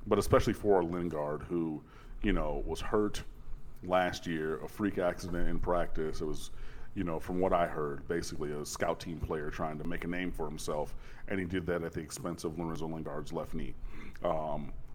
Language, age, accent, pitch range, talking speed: English, 30-49, American, 85-105 Hz, 195 wpm